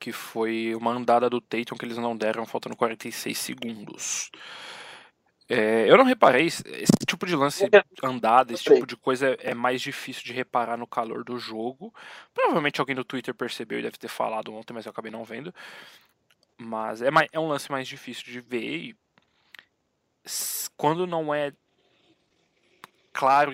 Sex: male